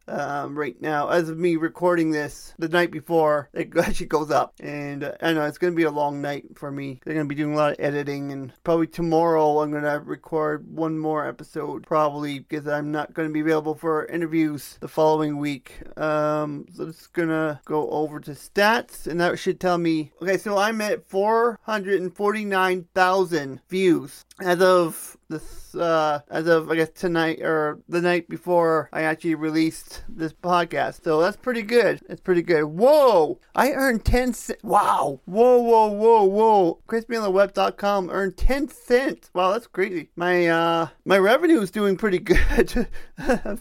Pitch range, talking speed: 155-195 Hz, 180 wpm